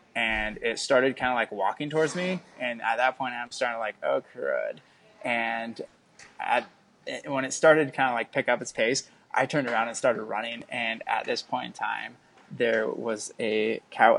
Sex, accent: male, American